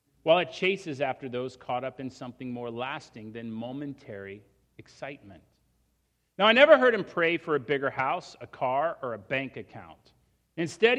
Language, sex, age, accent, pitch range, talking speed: English, male, 40-59, American, 120-160 Hz, 170 wpm